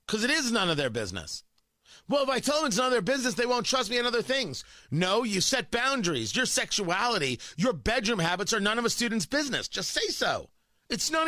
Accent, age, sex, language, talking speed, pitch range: American, 40-59, male, English, 235 wpm, 150-240 Hz